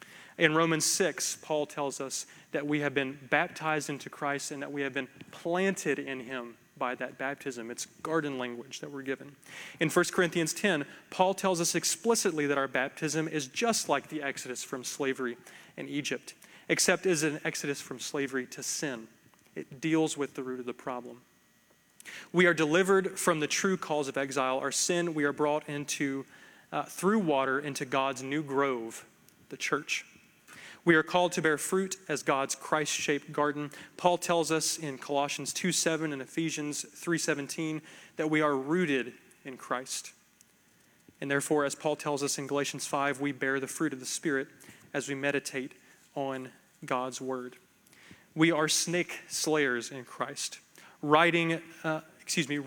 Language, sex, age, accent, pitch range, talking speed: English, male, 30-49, American, 135-165 Hz, 165 wpm